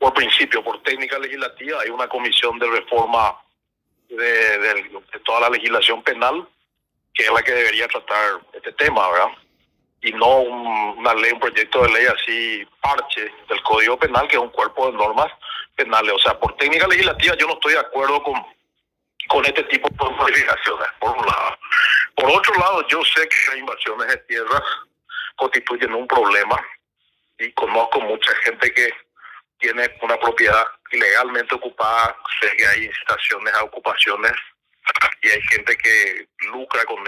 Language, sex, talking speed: Spanish, male, 165 wpm